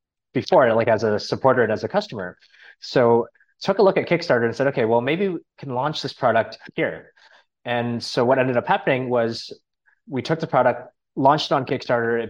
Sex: male